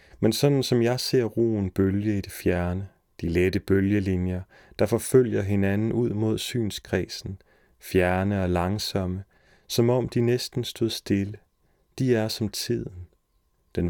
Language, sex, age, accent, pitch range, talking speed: Danish, male, 30-49, native, 95-110 Hz, 145 wpm